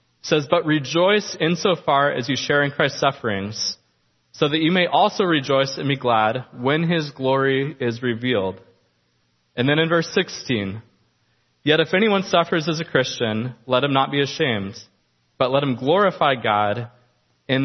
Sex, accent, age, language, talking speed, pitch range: male, American, 20-39, English, 160 wpm, 110-150 Hz